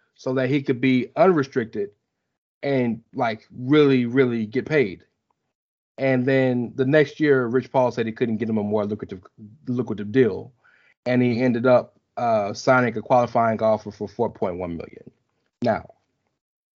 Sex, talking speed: male, 150 wpm